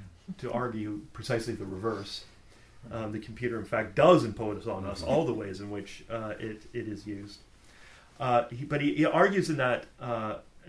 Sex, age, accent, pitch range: male, 40-59, American, 110-150 Hz